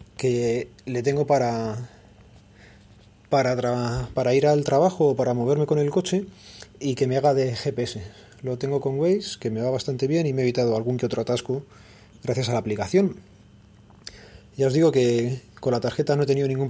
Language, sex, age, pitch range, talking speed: Spanish, male, 30-49, 115-140 Hz, 195 wpm